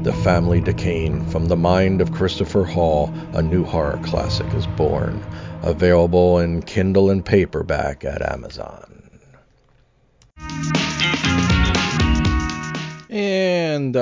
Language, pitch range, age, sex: English, 105-150 Hz, 40-59, male